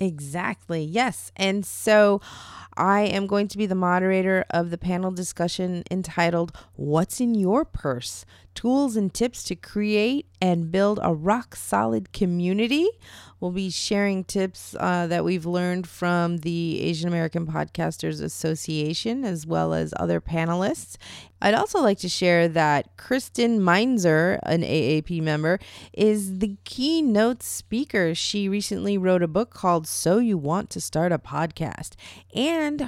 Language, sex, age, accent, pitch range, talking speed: English, female, 30-49, American, 165-215 Hz, 145 wpm